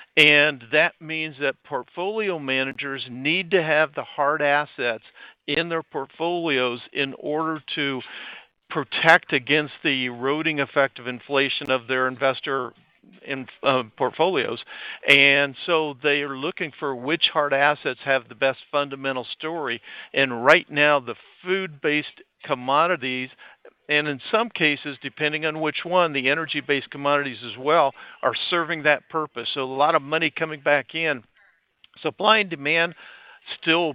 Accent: American